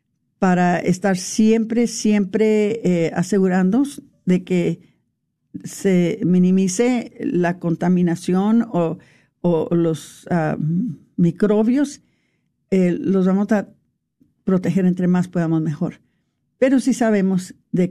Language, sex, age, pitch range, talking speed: Spanish, female, 50-69, 175-215 Hz, 100 wpm